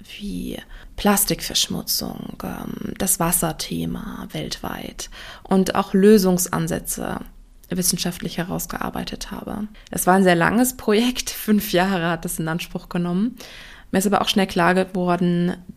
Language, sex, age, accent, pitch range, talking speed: German, female, 20-39, German, 170-205 Hz, 120 wpm